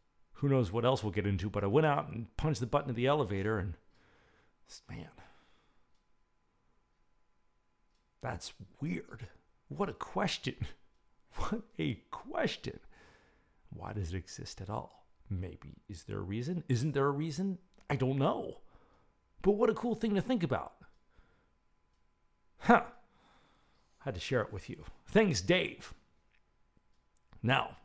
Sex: male